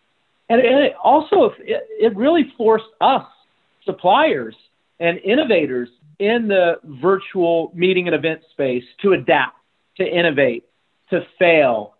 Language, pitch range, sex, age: English, 145-190 Hz, male, 40-59